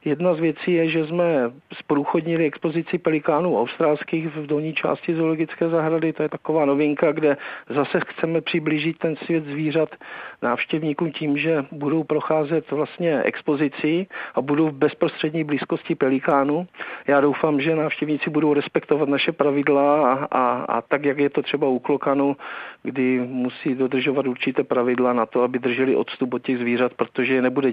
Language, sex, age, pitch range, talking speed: Czech, male, 50-69, 135-160 Hz, 155 wpm